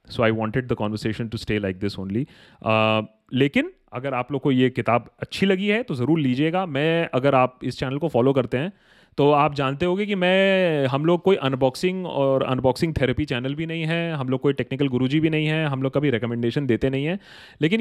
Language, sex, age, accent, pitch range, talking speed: Hindi, male, 30-49, native, 115-160 Hz, 220 wpm